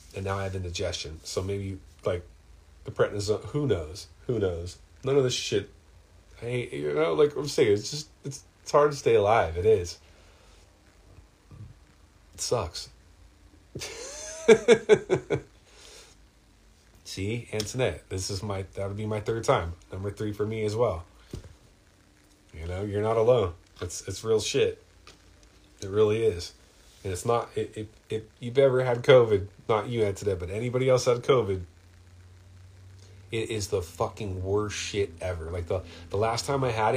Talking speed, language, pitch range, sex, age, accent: 160 wpm, English, 95-125 Hz, male, 30-49, American